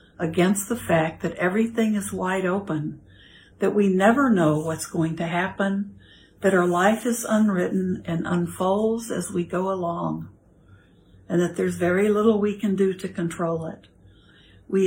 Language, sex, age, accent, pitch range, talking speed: English, female, 60-79, American, 165-210 Hz, 155 wpm